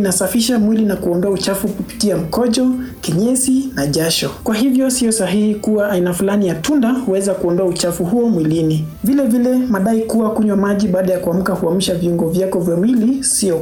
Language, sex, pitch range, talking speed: English, male, 175-230 Hz, 170 wpm